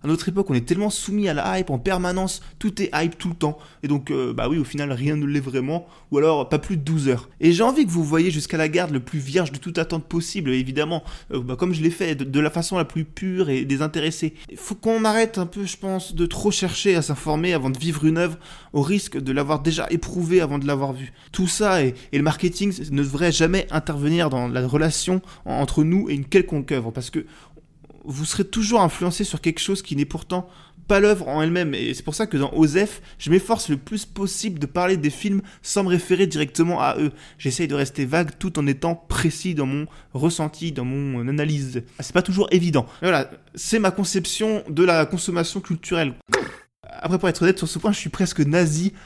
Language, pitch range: French, 150-185 Hz